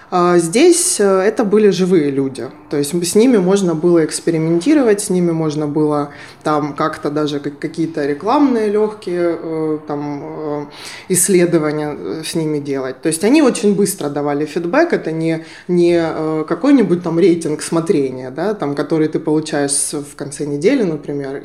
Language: Ukrainian